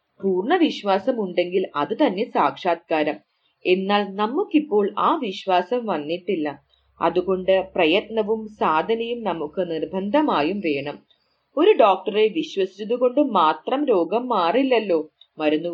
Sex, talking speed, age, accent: female, 120 wpm, 30-49, Indian